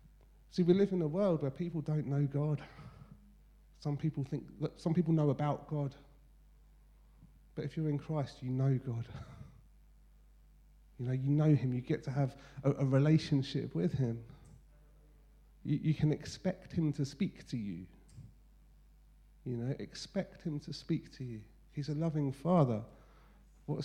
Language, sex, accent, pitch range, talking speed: English, male, British, 135-170 Hz, 160 wpm